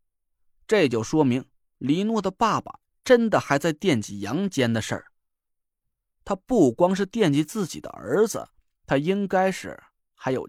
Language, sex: Chinese, male